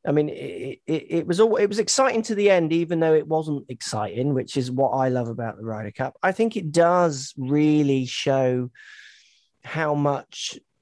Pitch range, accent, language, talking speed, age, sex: 125-155 Hz, British, English, 195 wpm, 30-49, male